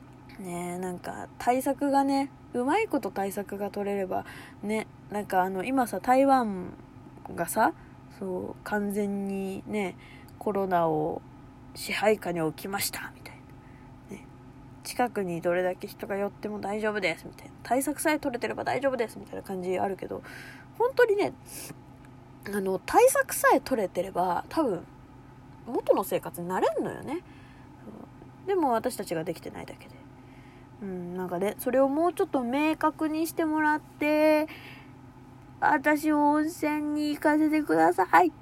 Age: 20-39